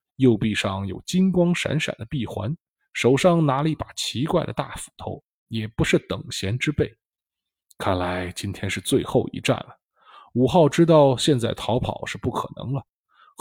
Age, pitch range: 20-39, 105-160 Hz